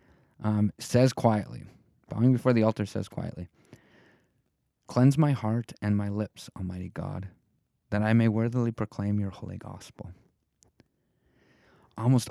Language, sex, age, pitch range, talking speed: English, male, 30-49, 100-125 Hz, 125 wpm